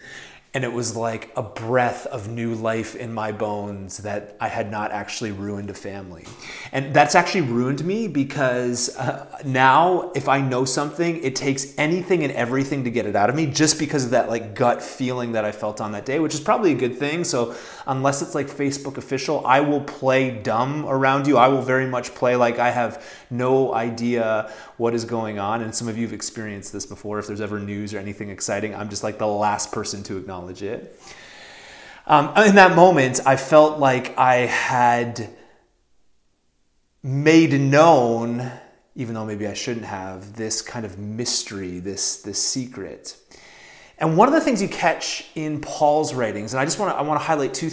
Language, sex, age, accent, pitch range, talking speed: English, male, 30-49, American, 105-140 Hz, 190 wpm